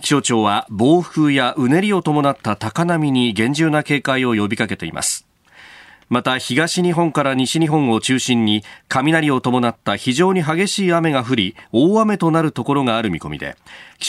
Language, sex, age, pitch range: Japanese, male, 40-59, 120-165 Hz